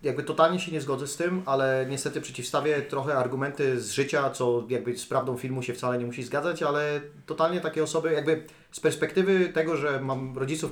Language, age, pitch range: Polish, 30-49, 135-160 Hz